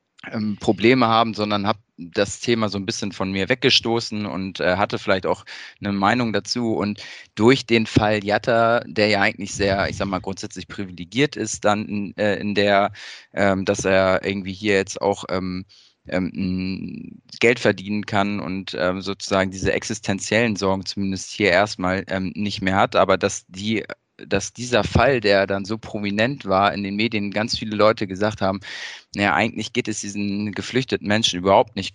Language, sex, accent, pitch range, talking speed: German, male, German, 95-110 Hz, 175 wpm